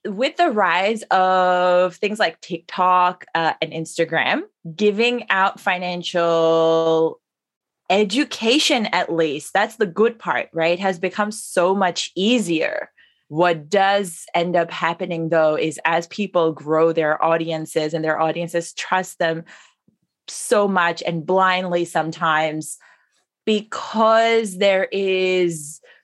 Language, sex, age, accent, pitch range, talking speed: English, female, 20-39, American, 165-200 Hz, 120 wpm